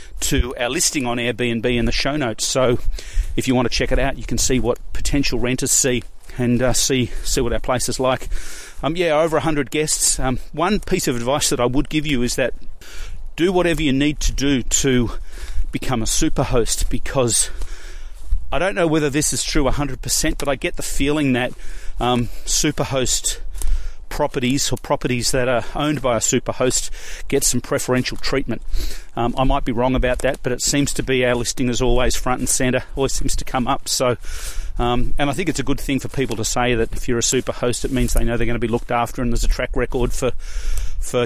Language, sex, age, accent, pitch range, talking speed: English, male, 30-49, Australian, 120-140 Hz, 225 wpm